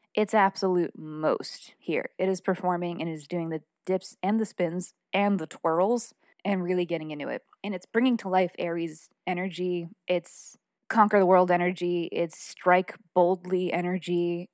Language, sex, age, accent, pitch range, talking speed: English, female, 20-39, American, 175-200 Hz, 160 wpm